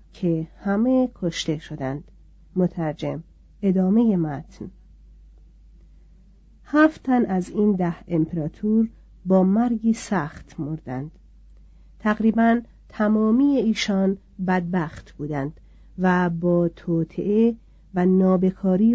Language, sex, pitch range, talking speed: Persian, female, 175-215 Hz, 80 wpm